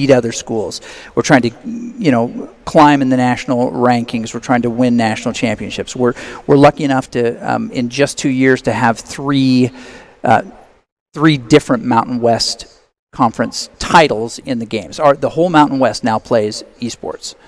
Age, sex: 40-59, male